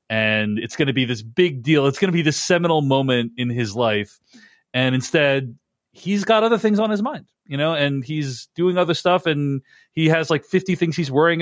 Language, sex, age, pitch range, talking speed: English, male, 40-59, 120-170 Hz, 220 wpm